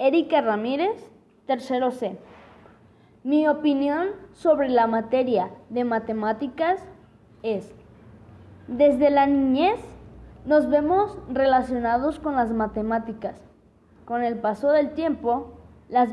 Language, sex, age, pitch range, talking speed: Spanish, female, 20-39, 220-300 Hz, 100 wpm